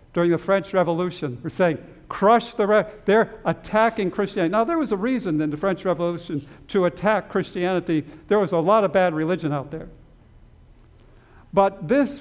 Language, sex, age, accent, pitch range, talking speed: English, male, 60-79, American, 145-180 Hz, 170 wpm